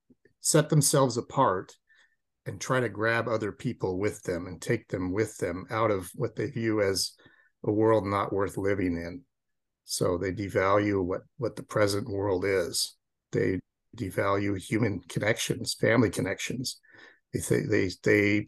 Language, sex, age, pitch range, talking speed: English, male, 50-69, 95-125 Hz, 155 wpm